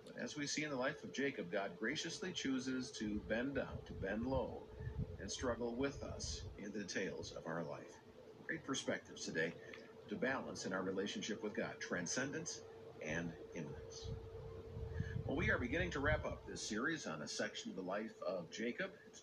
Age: 50-69